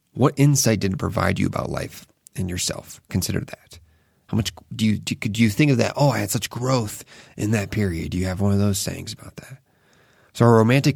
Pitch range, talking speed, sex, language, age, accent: 100-125 Hz, 230 wpm, male, English, 30-49, American